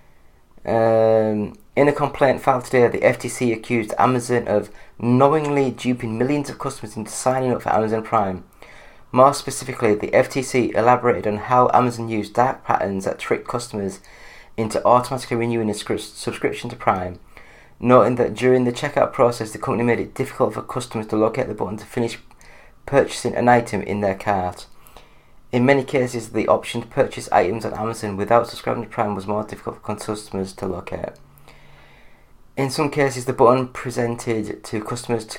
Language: English